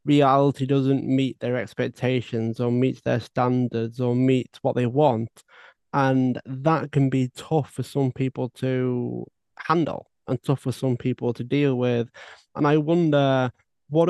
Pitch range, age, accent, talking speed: 125-140 Hz, 20-39, British, 155 wpm